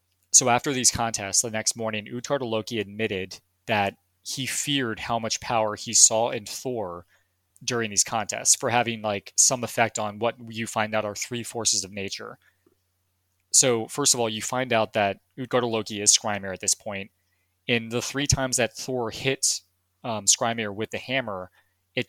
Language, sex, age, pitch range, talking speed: English, male, 20-39, 100-120 Hz, 180 wpm